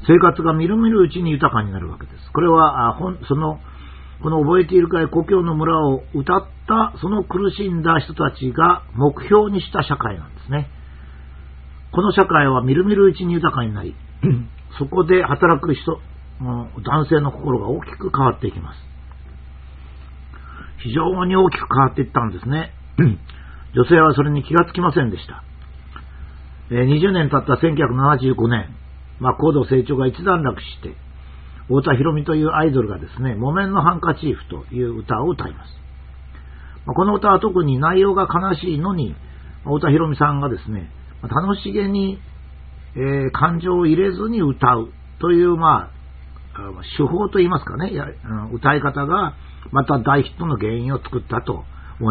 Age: 50-69